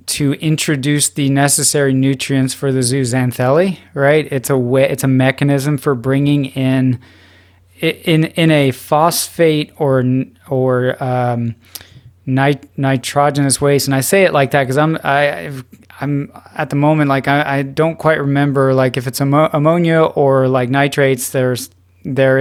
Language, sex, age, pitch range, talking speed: English, male, 20-39, 130-145 Hz, 155 wpm